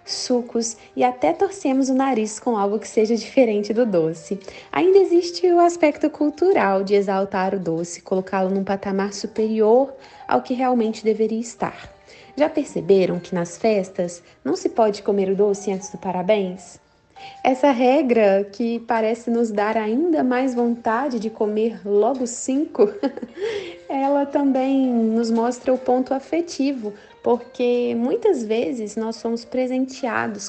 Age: 20-39